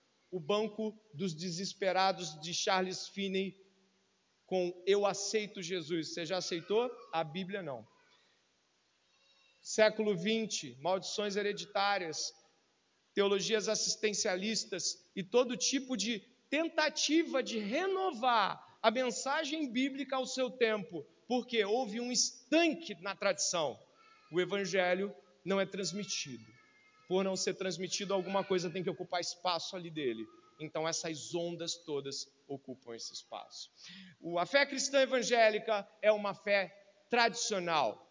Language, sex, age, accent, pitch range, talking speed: Portuguese, male, 40-59, Brazilian, 185-230 Hz, 115 wpm